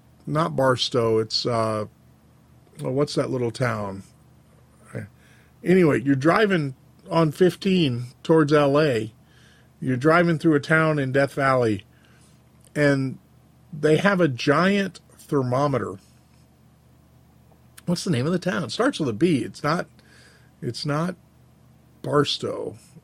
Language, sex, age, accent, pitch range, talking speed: English, male, 50-69, American, 120-155 Hz, 120 wpm